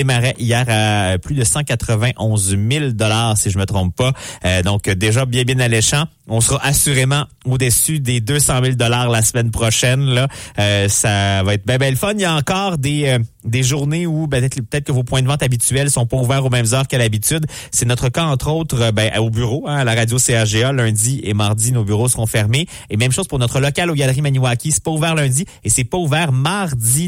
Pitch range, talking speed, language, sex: 110-135 Hz, 225 wpm, English, male